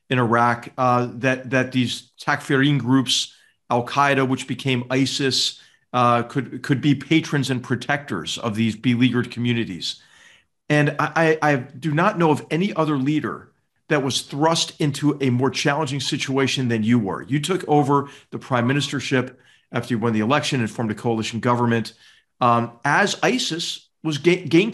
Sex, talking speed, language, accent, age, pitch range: male, 160 wpm, English, American, 40-59, 125-155 Hz